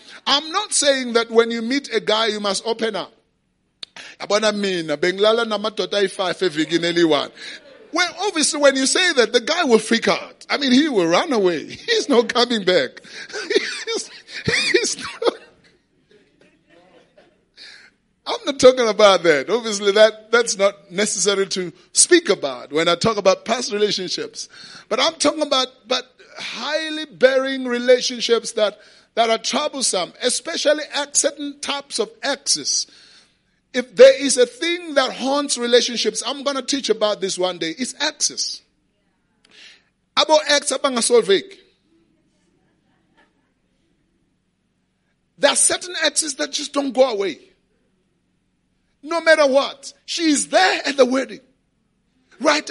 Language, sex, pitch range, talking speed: English, male, 220-305 Hz, 125 wpm